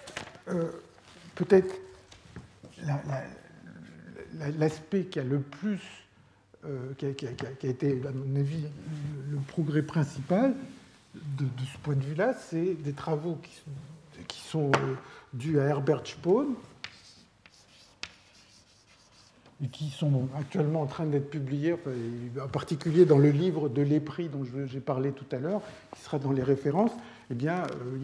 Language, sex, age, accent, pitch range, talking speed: French, male, 60-79, French, 135-165 Hz, 155 wpm